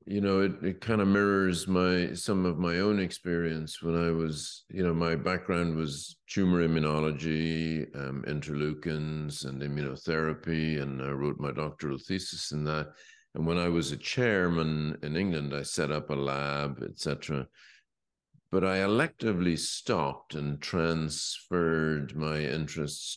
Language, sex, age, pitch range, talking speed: English, male, 50-69, 75-95 Hz, 150 wpm